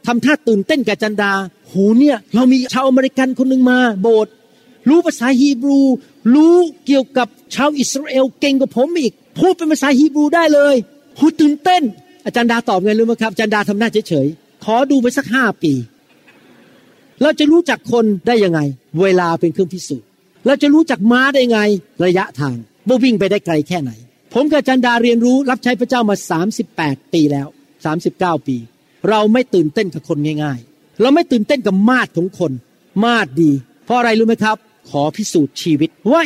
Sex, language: male, Thai